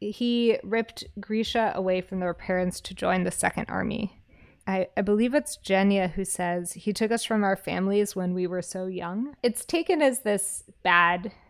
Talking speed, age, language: 185 wpm, 20-39, English